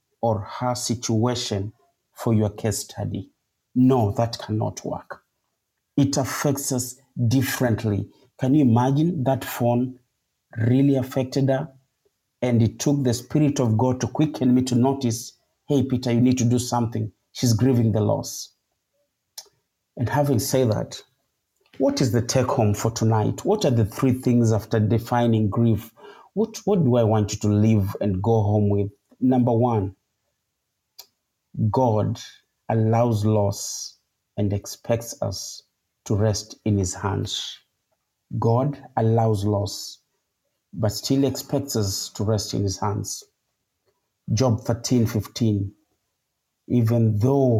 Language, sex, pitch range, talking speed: English, male, 110-130 Hz, 135 wpm